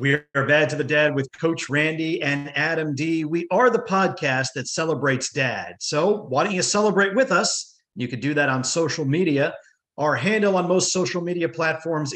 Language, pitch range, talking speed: English, 135-180 Hz, 195 wpm